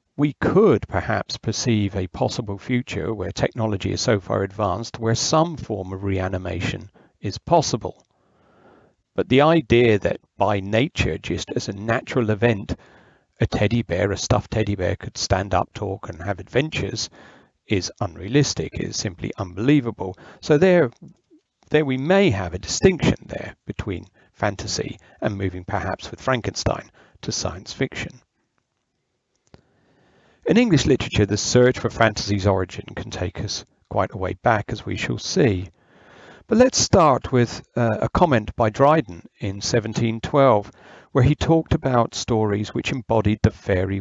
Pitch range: 100-125 Hz